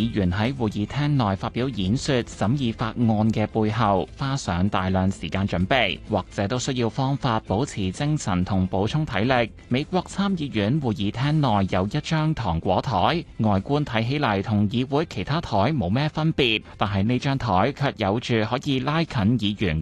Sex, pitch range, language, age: male, 100-135 Hz, Chinese, 20-39